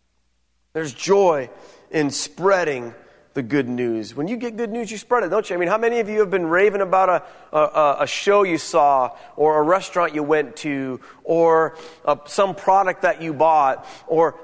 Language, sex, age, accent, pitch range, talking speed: English, male, 30-49, American, 145-195 Hz, 190 wpm